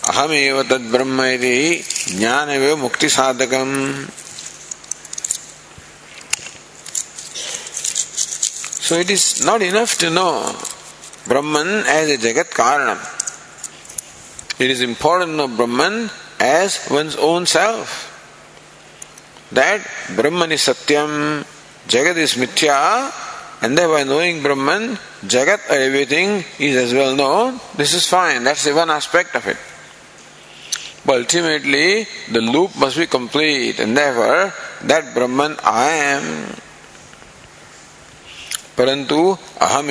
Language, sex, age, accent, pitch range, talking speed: English, male, 50-69, Indian, 130-155 Hz, 95 wpm